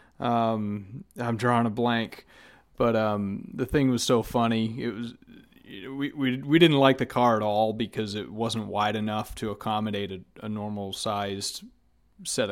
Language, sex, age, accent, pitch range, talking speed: English, male, 30-49, American, 105-125 Hz, 170 wpm